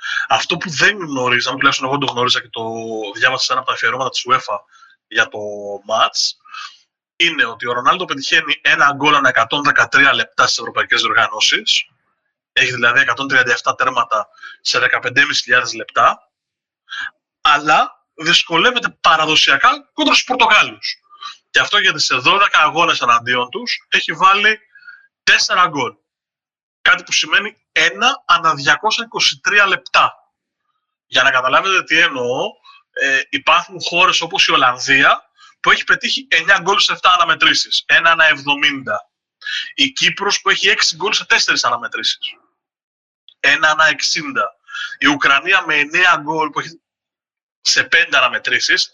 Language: Greek